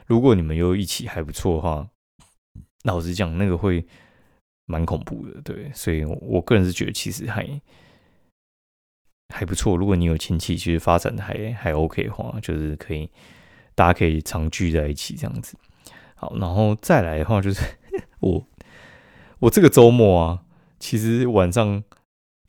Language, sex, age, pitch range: Chinese, male, 20-39, 85-110 Hz